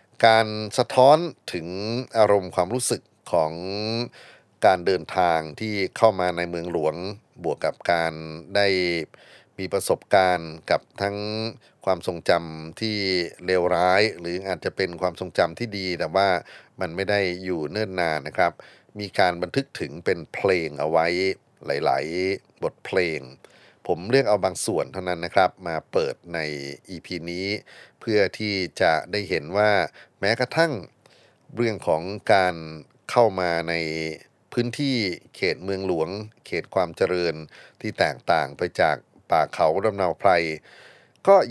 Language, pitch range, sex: Thai, 85-105 Hz, male